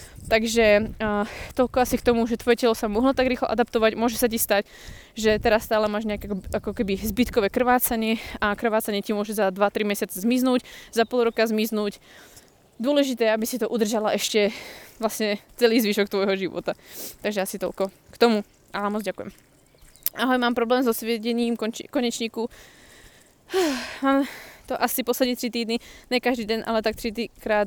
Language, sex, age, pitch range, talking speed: Slovak, female, 20-39, 210-240 Hz, 170 wpm